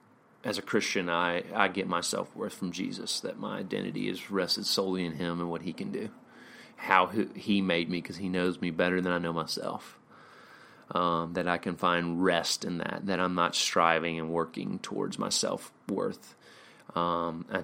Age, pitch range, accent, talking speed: 30-49, 85-90 Hz, American, 185 wpm